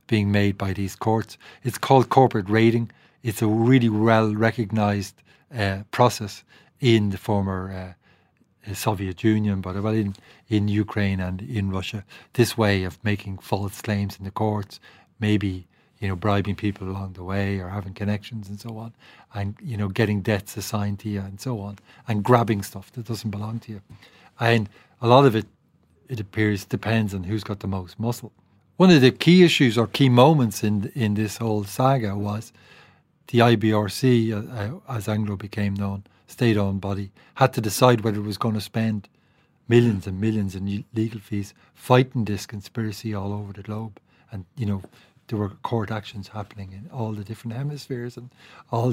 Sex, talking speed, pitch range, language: male, 175 wpm, 100-115 Hz, English